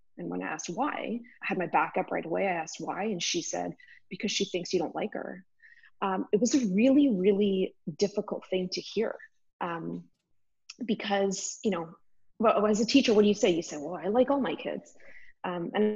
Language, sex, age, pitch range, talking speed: English, female, 20-39, 180-230 Hz, 215 wpm